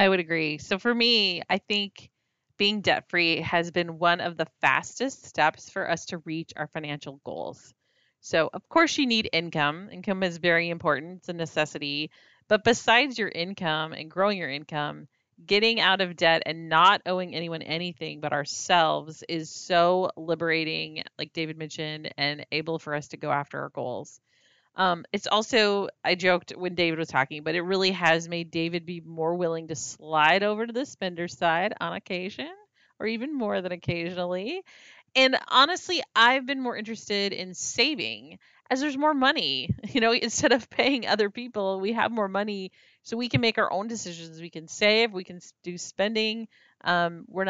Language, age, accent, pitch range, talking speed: English, 30-49, American, 165-215 Hz, 180 wpm